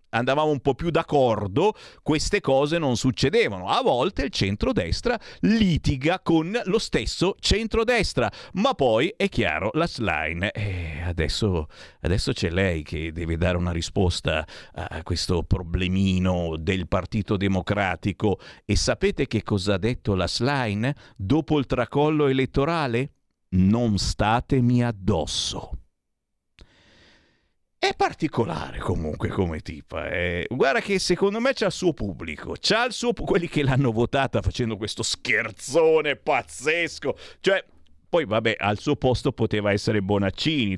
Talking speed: 130 wpm